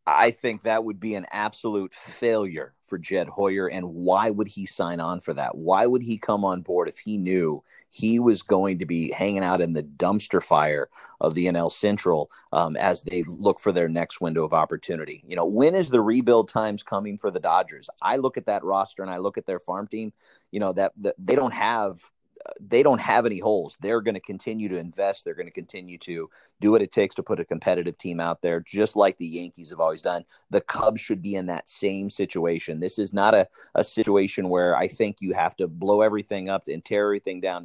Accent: American